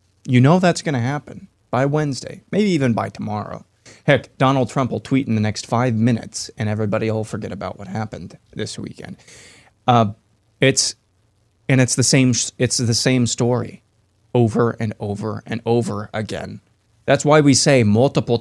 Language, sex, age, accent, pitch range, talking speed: English, male, 20-39, American, 110-130 Hz, 170 wpm